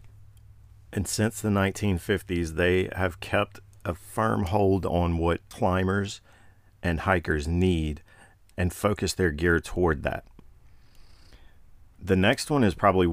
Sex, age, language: male, 40-59, English